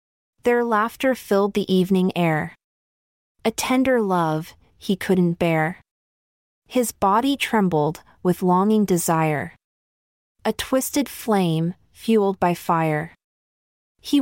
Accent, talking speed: American, 105 wpm